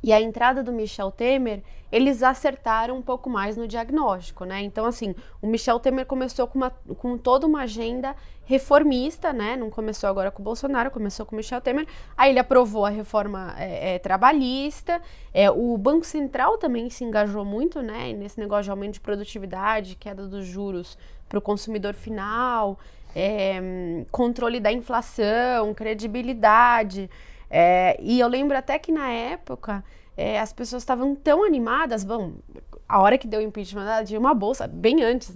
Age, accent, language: 20-39, Brazilian, English